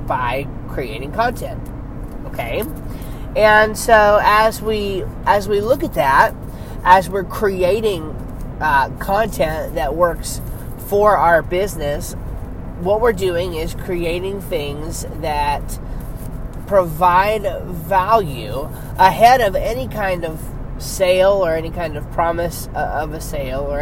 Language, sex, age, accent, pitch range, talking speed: English, male, 20-39, American, 140-185 Hz, 120 wpm